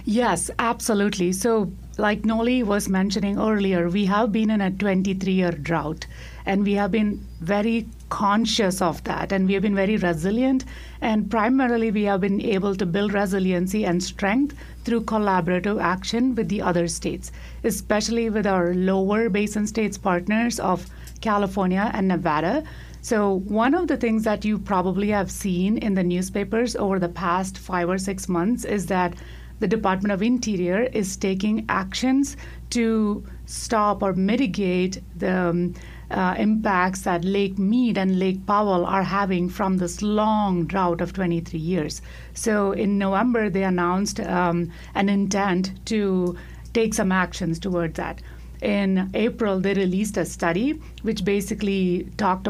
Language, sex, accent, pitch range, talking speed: English, female, Indian, 185-215 Hz, 150 wpm